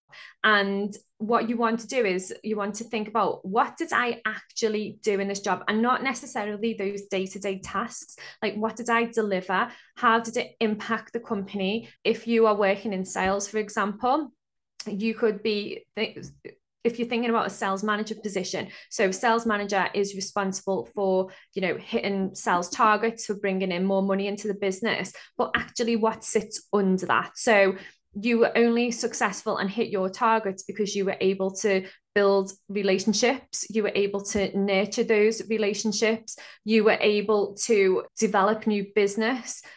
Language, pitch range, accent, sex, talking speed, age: English, 195-225 Hz, British, female, 170 wpm, 20-39